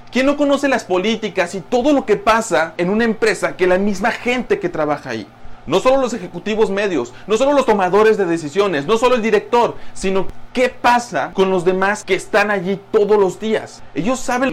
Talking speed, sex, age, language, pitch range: 200 wpm, male, 30-49, Spanish, 180-235 Hz